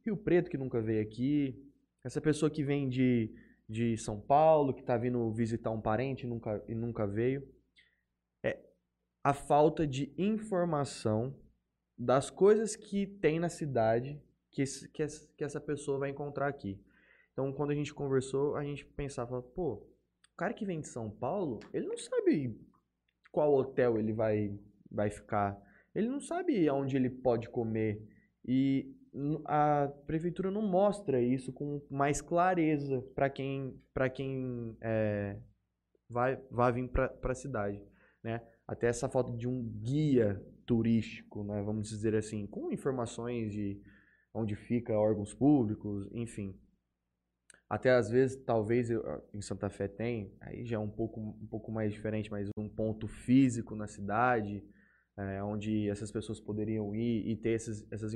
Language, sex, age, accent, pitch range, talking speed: Portuguese, male, 20-39, Brazilian, 110-140 Hz, 155 wpm